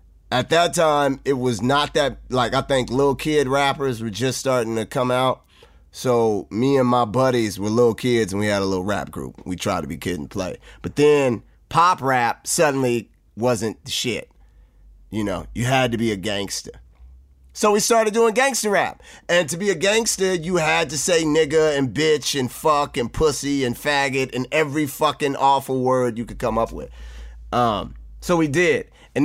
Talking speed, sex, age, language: 195 wpm, male, 30-49, English